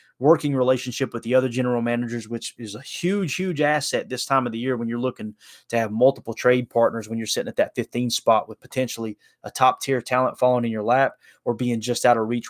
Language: English